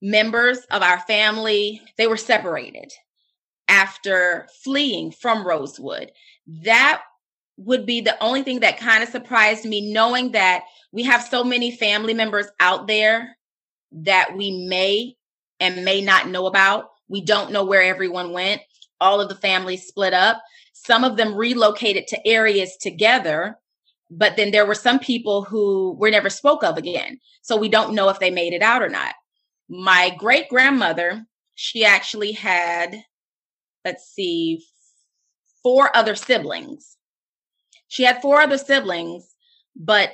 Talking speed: 145 wpm